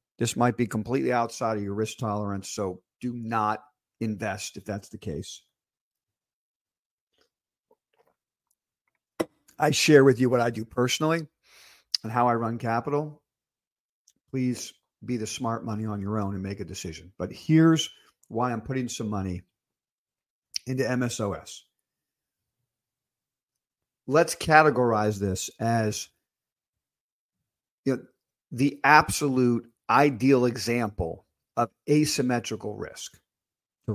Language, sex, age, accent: English, male, 50-69, American